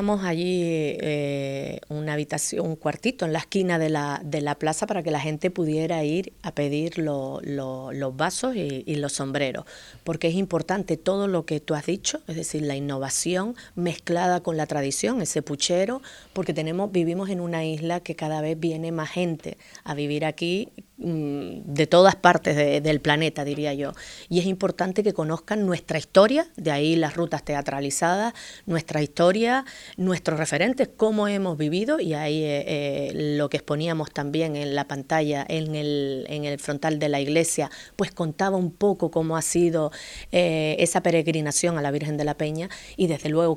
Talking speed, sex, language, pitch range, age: 175 wpm, female, Spanish, 150-180 Hz, 30-49